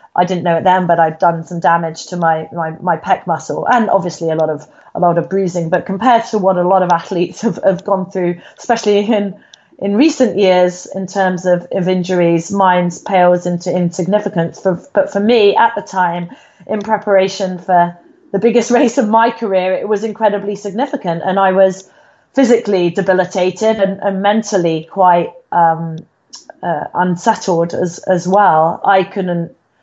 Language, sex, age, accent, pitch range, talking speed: English, female, 30-49, British, 170-200 Hz, 175 wpm